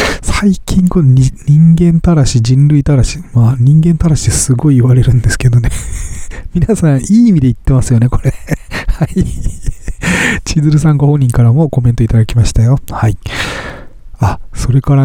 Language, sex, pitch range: Japanese, male, 115-150 Hz